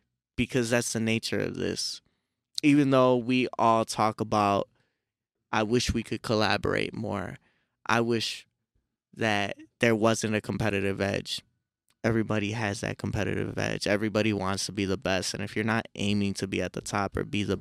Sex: male